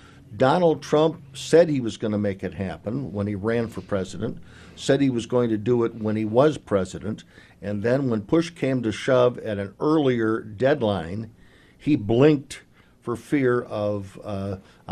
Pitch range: 105-130 Hz